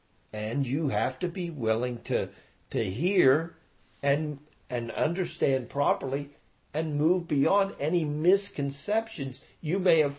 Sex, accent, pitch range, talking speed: male, American, 110-155 Hz, 125 wpm